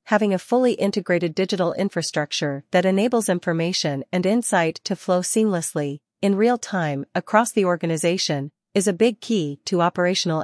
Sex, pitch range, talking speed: female, 165-195 Hz, 150 wpm